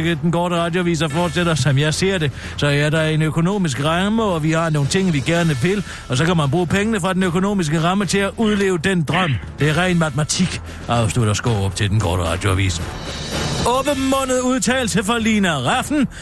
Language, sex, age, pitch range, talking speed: Danish, male, 40-59, 140-195 Hz, 205 wpm